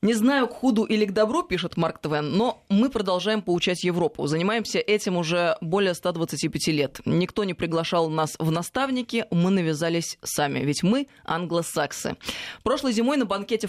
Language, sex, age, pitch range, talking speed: Russian, female, 20-39, 165-210 Hz, 160 wpm